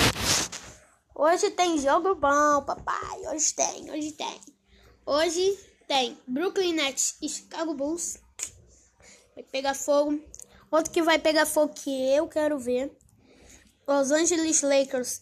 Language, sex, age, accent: Portuguese, female, 10-29, Brazilian